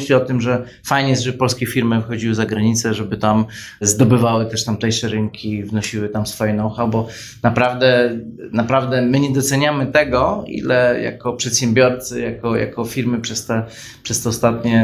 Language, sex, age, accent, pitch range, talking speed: Polish, male, 20-39, native, 110-125 Hz, 155 wpm